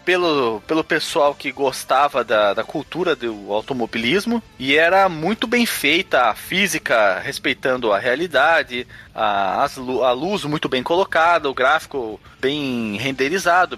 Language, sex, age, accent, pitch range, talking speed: Portuguese, male, 20-39, Brazilian, 120-175 Hz, 130 wpm